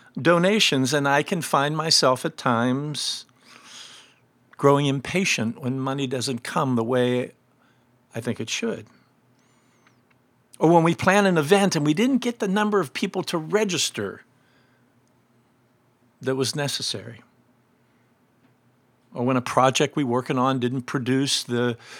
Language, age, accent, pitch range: English, 50-69, American, 125-150 Hz